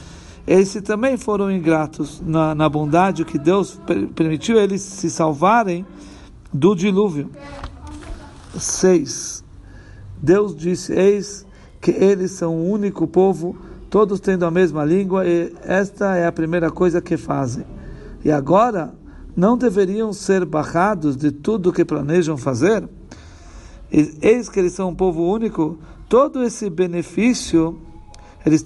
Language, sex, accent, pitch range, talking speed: Portuguese, male, Brazilian, 160-205 Hz, 130 wpm